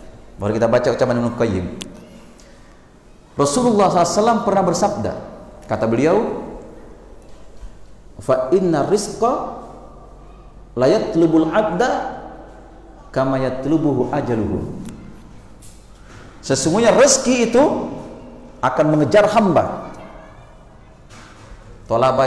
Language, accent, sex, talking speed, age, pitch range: Indonesian, native, male, 75 wpm, 40-59, 120-195 Hz